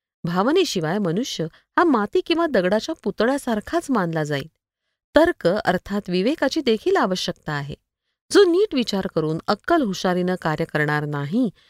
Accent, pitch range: native, 180-285 Hz